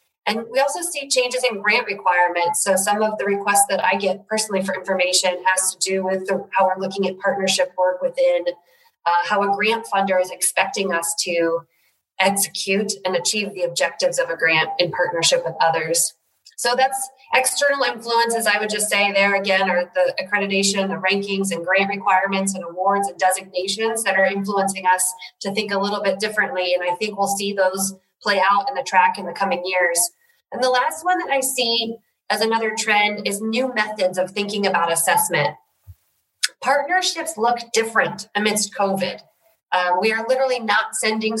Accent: American